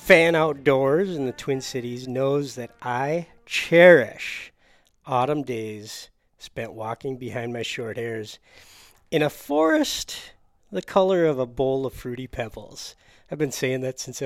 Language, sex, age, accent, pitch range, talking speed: English, male, 40-59, American, 115-145 Hz, 145 wpm